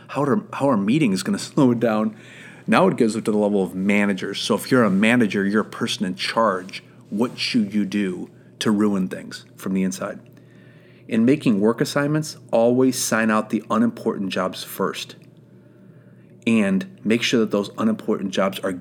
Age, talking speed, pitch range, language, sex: 40-59, 185 wpm, 100-155 Hz, English, male